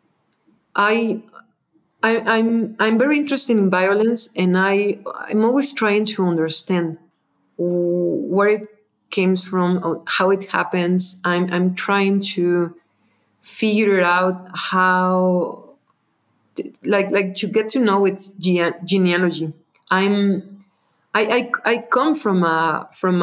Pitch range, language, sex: 170-200 Hz, English, female